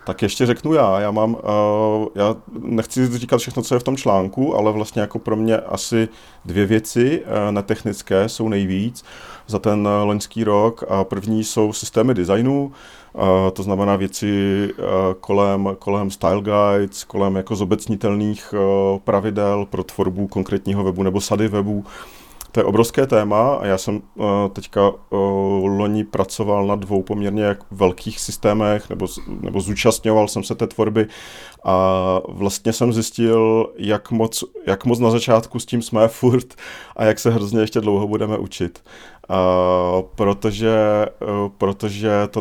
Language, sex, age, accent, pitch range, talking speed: Czech, male, 40-59, native, 95-110 Hz, 140 wpm